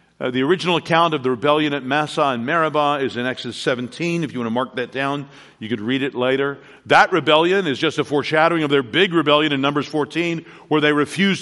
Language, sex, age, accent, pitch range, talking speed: English, male, 50-69, American, 135-180 Hz, 225 wpm